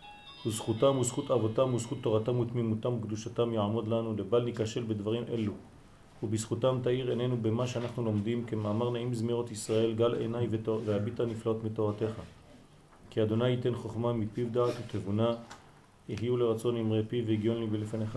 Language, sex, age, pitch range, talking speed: French, male, 40-59, 110-125 Hz, 140 wpm